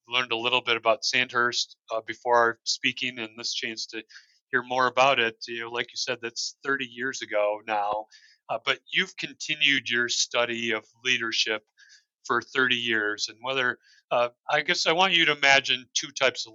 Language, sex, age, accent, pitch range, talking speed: English, male, 30-49, American, 115-130 Hz, 190 wpm